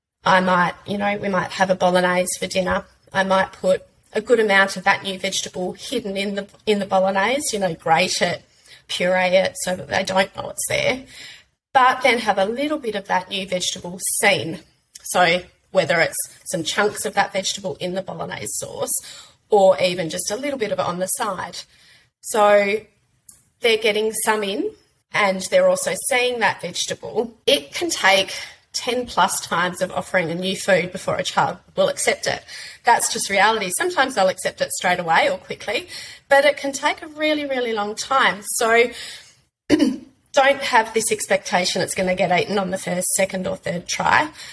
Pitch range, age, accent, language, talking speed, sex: 185-230 Hz, 30-49, Australian, English, 185 wpm, female